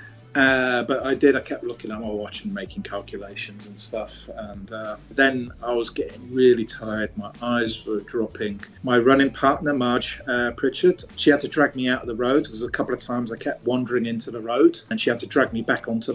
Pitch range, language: 115-145 Hz, English